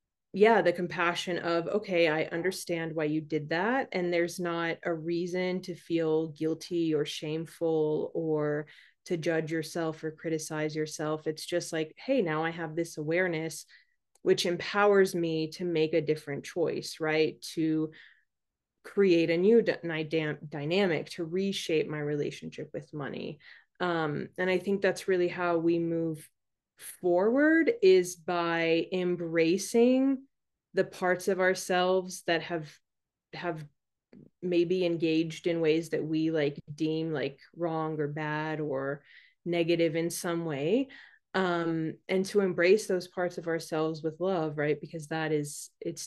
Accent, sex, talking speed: American, female, 140 wpm